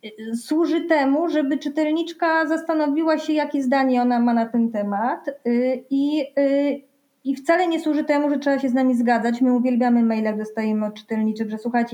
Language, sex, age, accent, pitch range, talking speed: Polish, female, 20-39, native, 240-295 Hz, 170 wpm